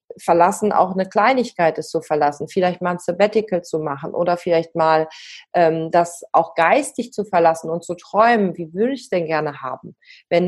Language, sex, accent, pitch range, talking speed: German, female, German, 170-210 Hz, 190 wpm